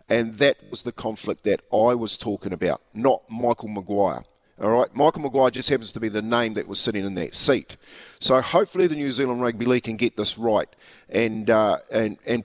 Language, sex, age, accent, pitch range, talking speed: English, male, 50-69, Australian, 110-135 Hz, 210 wpm